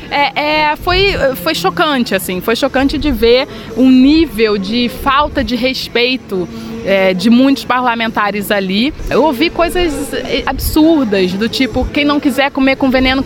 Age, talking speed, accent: 20-39, 155 wpm, Brazilian